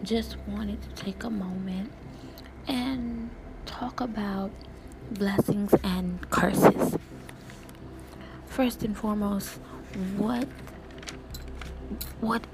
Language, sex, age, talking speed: English, female, 20-39, 80 wpm